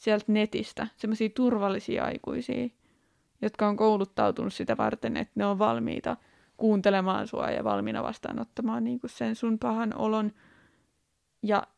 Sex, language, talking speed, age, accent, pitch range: female, Finnish, 125 wpm, 20-39, native, 200-245 Hz